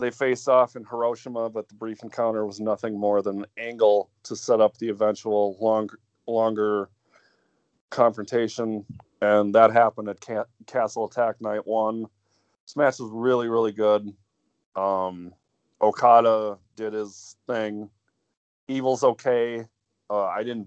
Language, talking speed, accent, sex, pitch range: English, 135 wpm, American, male, 105-115 Hz